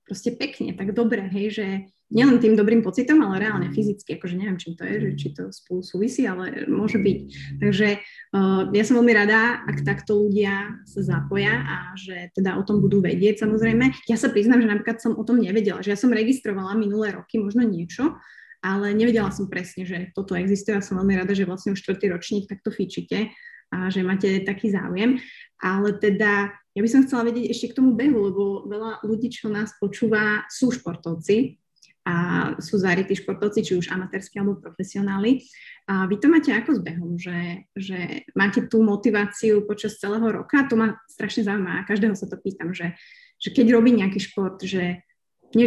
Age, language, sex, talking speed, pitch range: 20-39, Slovak, female, 190 wpm, 190-225 Hz